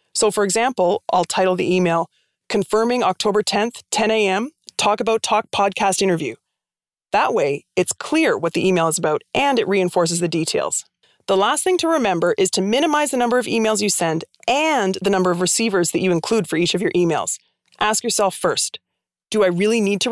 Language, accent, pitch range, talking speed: English, American, 185-245 Hz, 195 wpm